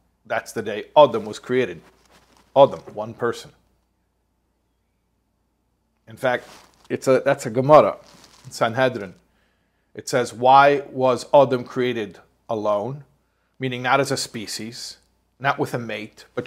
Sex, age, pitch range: male, 40-59, 125-160 Hz